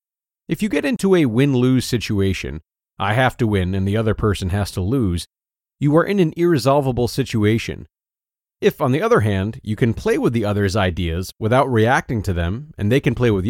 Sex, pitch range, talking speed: male, 100-130 Hz, 200 wpm